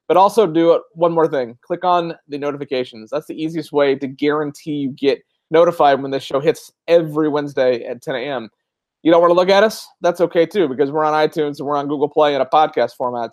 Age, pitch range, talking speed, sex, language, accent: 30-49, 140-165 Hz, 230 wpm, male, English, American